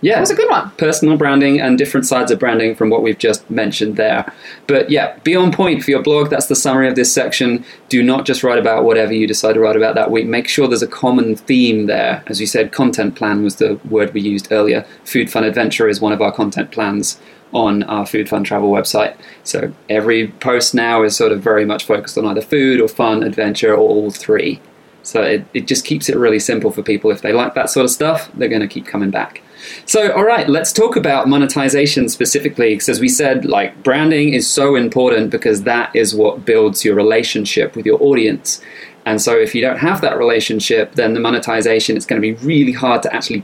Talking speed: 230 wpm